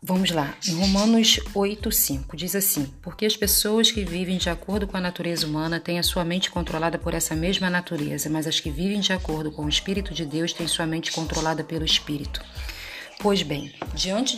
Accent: Brazilian